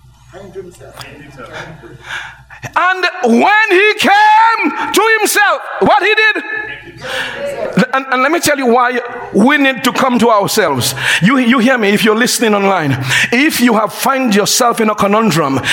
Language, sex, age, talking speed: English, male, 50-69, 145 wpm